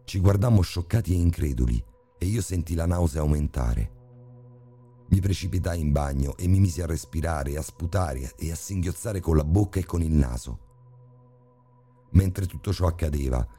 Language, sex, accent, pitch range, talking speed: Italian, male, native, 75-100 Hz, 160 wpm